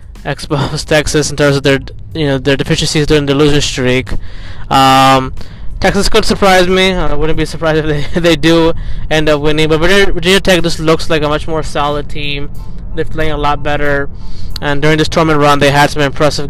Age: 20-39